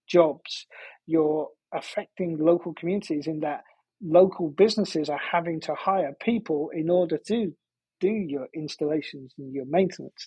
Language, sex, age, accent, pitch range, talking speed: English, male, 40-59, British, 145-180 Hz, 135 wpm